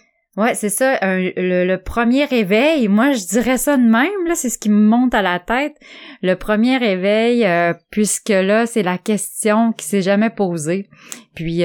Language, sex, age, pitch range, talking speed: French, female, 20-39, 160-210 Hz, 190 wpm